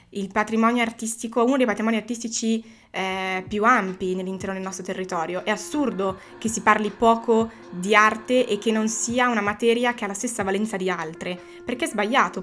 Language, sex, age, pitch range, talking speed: Italian, female, 20-39, 190-225 Hz, 185 wpm